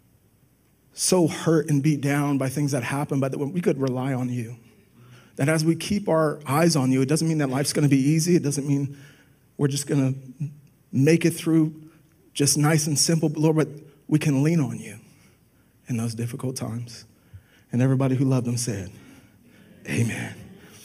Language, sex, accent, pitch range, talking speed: English, male, American, 135-155 Hz, 185 wpm